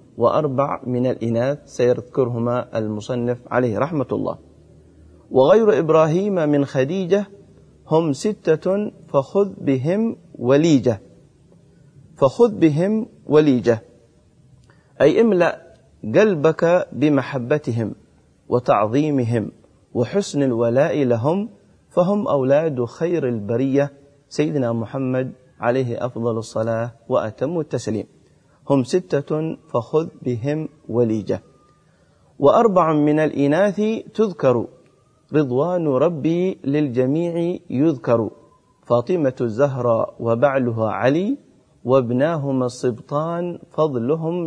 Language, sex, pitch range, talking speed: Arabic, male, 120-160 Hz, 80 wpm